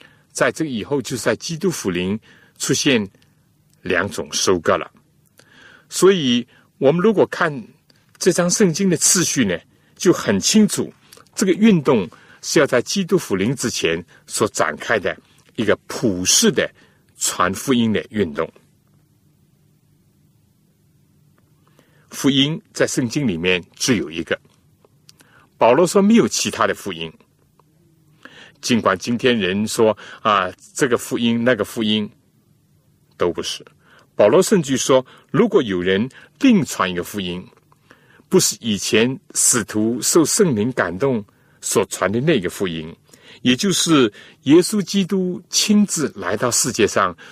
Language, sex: Chinese, male